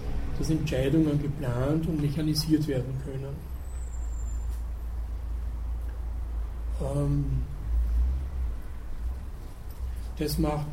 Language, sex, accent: German, male, German